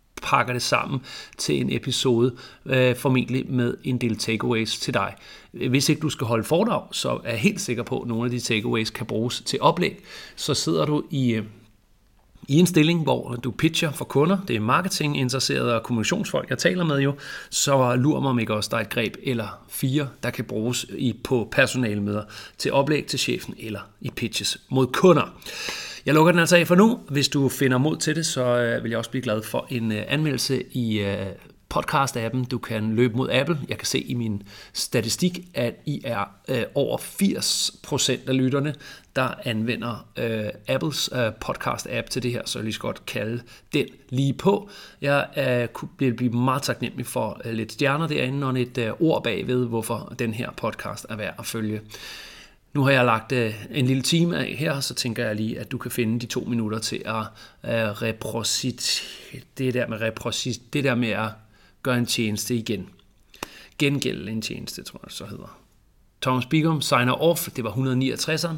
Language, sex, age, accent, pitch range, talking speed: Danish, male, 40-59, native, 115-140 Hz, 180 wpm